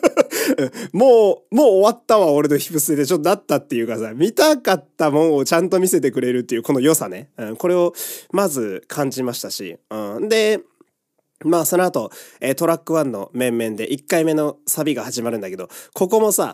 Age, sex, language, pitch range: 20-39, male, Japanese, 135-225 Hz